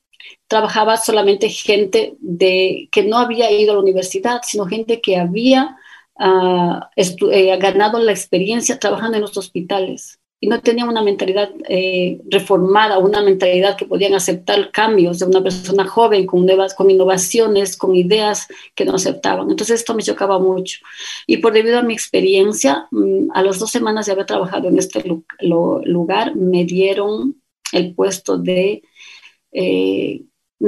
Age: 40-59